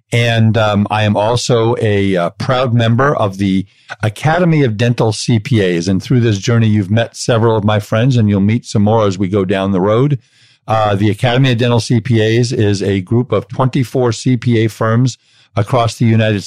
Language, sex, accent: English, male, American